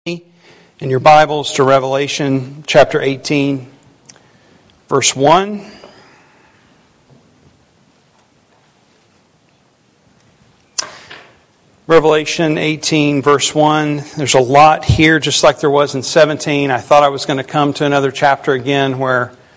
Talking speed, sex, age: 105 wpm, male, 50-69